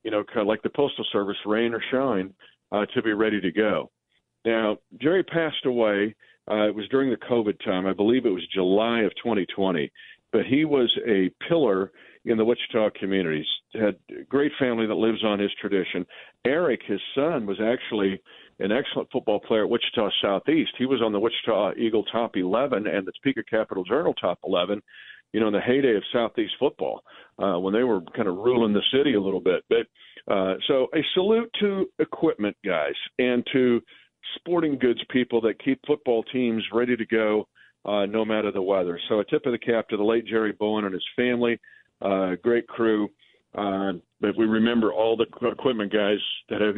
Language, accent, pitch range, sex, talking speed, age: English, American, 100-125 Hz, male, 195 wpm, 50-69